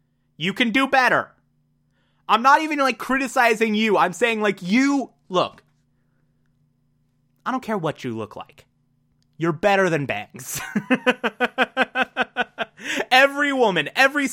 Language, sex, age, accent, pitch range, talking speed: English, male, 30-49, American, 165-255 Hz, 120 wpm